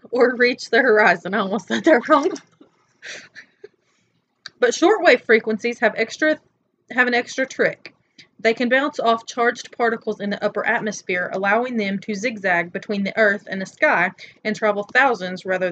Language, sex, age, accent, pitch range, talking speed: English, female, 30-49, American, 195-245 Hz, 160 wpm